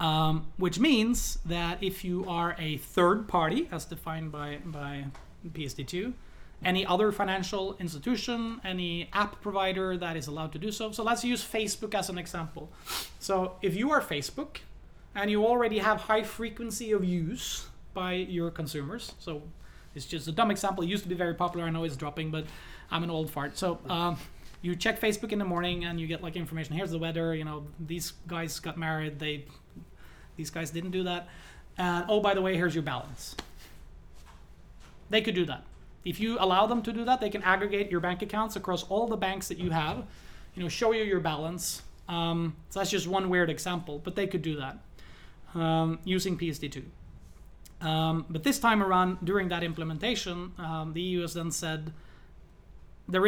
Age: 20-39